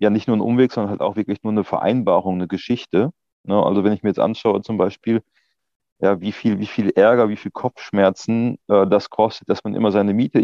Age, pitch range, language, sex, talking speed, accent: 30-49, 95-115 Hz, German, male, 230 wpm, German